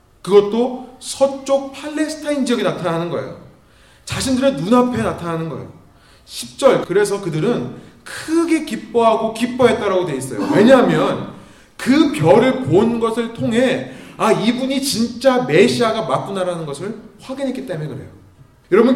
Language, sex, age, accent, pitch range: Korean, male, 30-49, native, 170-260 Hz